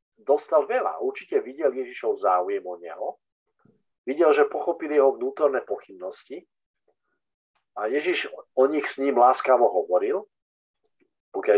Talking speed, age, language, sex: 120 wpm, 50-69, Slovak, male